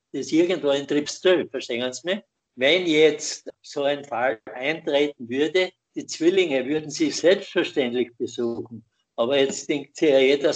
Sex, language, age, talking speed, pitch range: male, German, 60-79, 140 wpm, 140-185 Hz